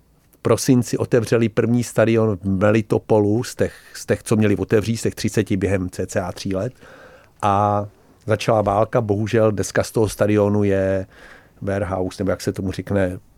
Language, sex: Czech, male